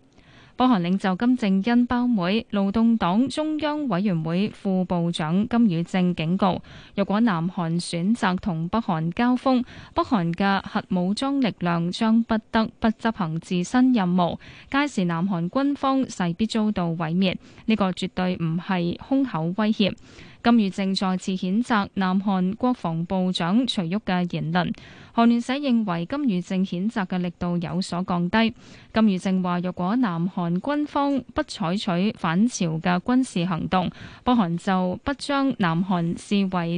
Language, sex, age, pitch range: Chinese, female, 10-29, 180-235 Hz